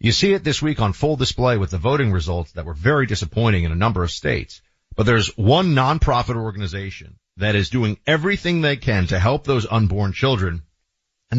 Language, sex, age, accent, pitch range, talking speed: English, male, 40-59, American, 95-140 Hz, 200 wpm